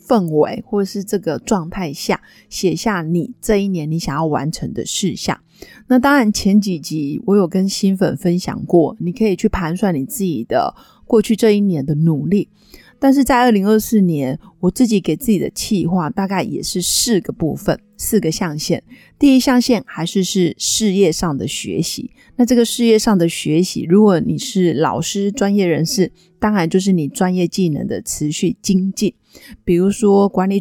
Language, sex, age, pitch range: Chinese, female, 30-49, 165-210 Hz